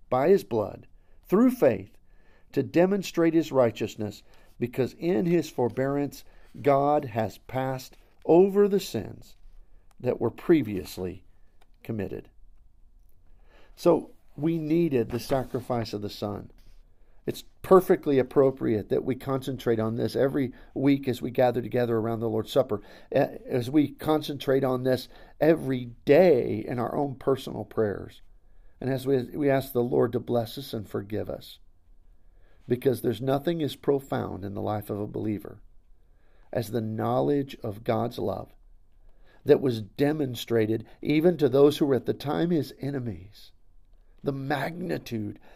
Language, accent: English, American